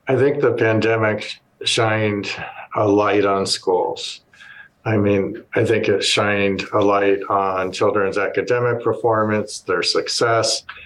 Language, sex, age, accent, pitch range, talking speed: English, male, 50-69, American, 95-110 Hz, 125 wpm